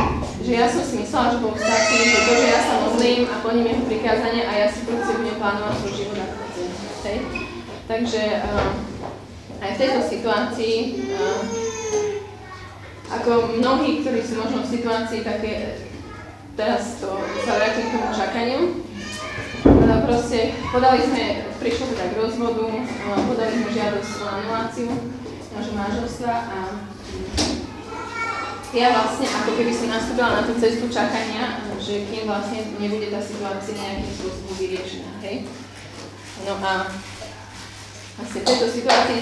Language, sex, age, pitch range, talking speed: Slovak, female, 20-39, 205-240 Hz, 130 wpm